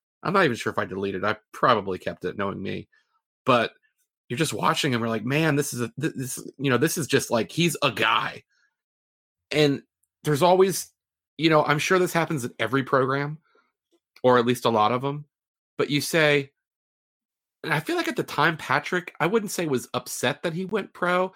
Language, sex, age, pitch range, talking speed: English, male, 30-49, 115-160 Hz, 205 wpm